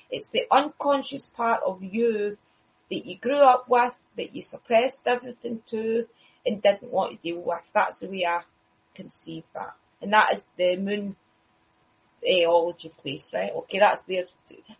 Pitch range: 190-235 Hz